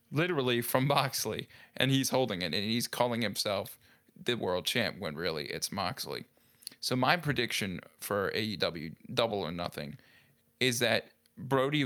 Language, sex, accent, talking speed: English, male, American, 145 wpm